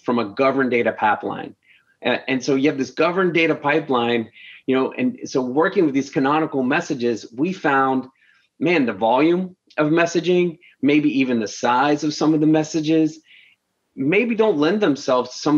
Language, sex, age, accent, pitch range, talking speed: English, male, 30-49, American, 120-150 Hz, 170 wpm